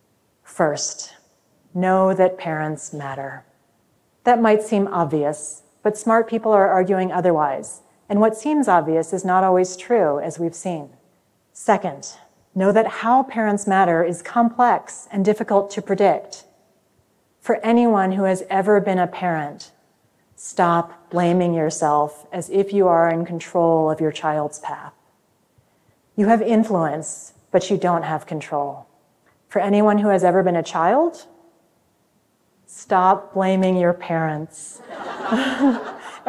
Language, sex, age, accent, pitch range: Korean, female, 30-49, American, 165-215 Hz